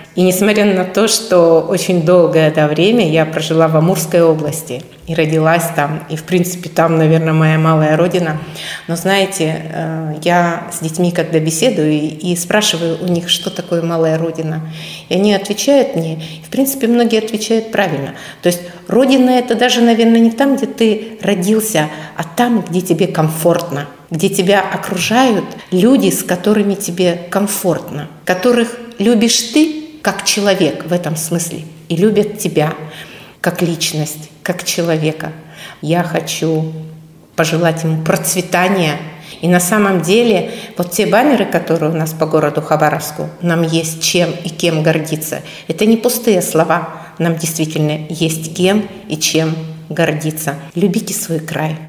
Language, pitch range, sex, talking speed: Russian, 160-200 Hz, female, 145 wpm